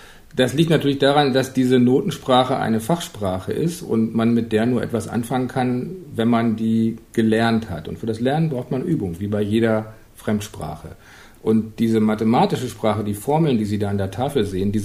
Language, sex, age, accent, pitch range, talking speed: German, male, 50-69, German, 110-135 Hz, 195 wpm